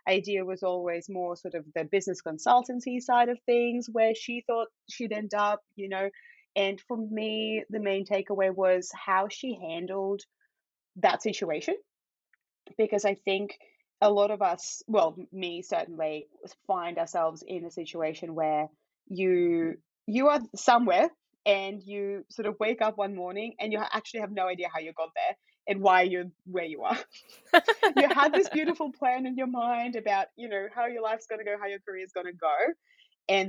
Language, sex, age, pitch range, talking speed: English, female, 20-39, 180-230 Hz, 175 wpm